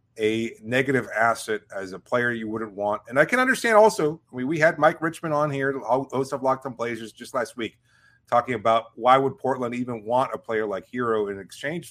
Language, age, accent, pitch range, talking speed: English, 30-49, American, 115-150 Hz, 210 wpm